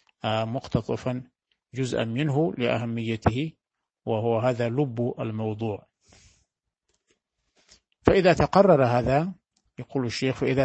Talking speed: 80 wpm